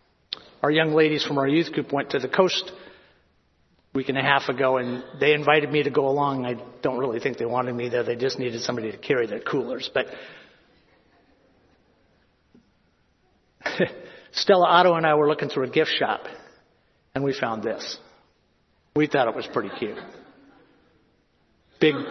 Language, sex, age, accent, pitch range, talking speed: English, male, 50-69, American, 145-225 Hz, 170 wpm